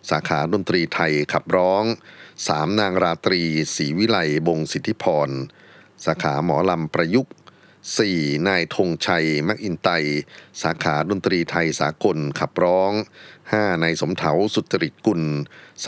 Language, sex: Thai, male